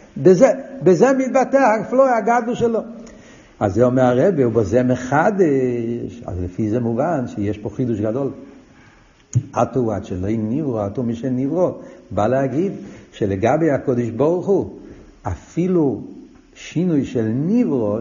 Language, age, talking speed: Hebrew, 60-79, 125 wpm